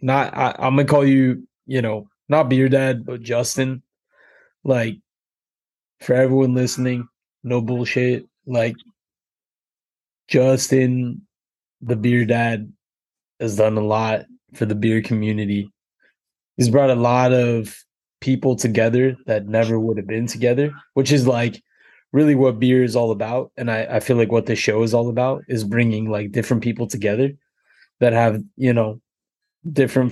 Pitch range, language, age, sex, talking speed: 110-125 Hz, English, 20-39, male, 150 wpm